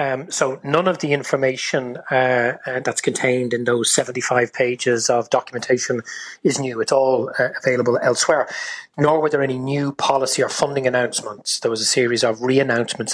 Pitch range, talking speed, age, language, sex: 125-155 Hz, 170 wpm, 30-49, English, male